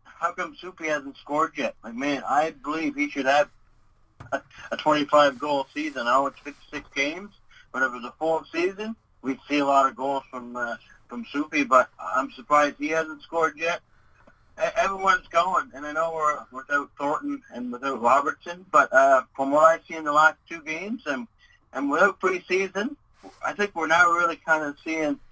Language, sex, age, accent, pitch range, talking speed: English, male, 60-79, American, 130-170 Hz, 185 wpm